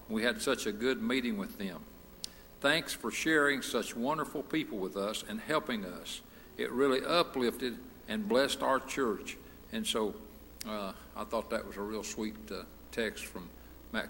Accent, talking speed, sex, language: American, 170 wpm, male, English